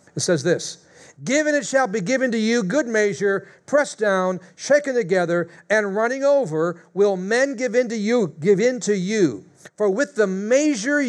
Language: English